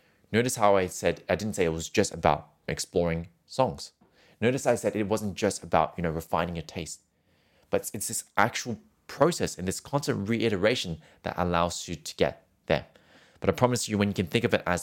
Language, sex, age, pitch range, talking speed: English, male, 20-39, 85-110 Hz, 210 wpm